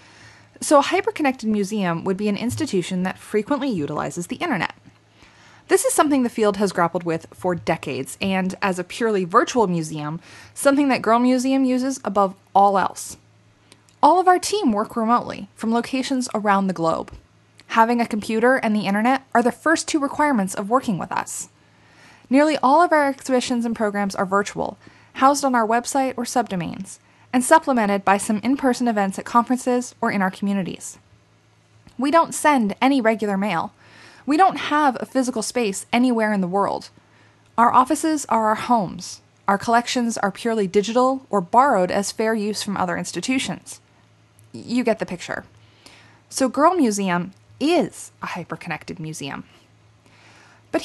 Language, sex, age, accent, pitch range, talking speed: English, female, 20-39, American, 180-255 Hz, 160 wpm